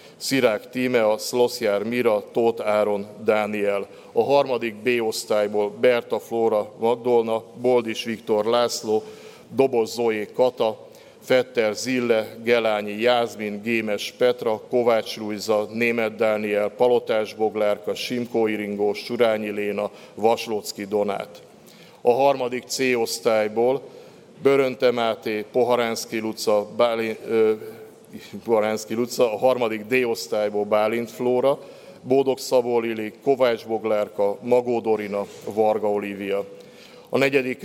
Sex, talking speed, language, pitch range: male, 95 wpm, Hungarian, 105-125 Hz